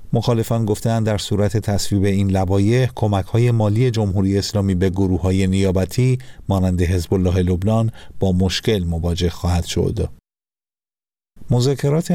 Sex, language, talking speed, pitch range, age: male, Persian, 115 wpm, 95-115 Hz, 50-69